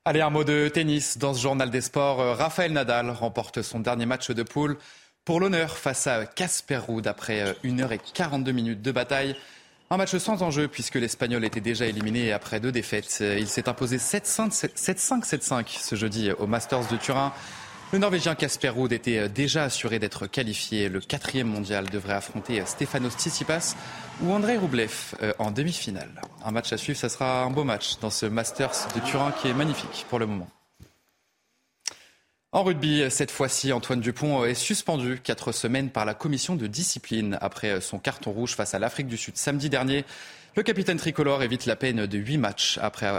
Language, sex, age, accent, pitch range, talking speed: French, male, 20-39, French, 110-145 Hz, 180 wpm